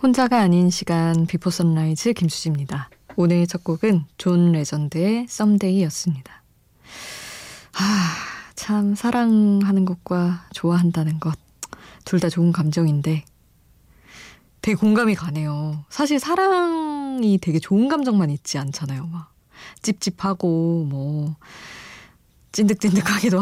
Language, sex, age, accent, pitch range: Korean, female, 20-39, native, 160-210 Hz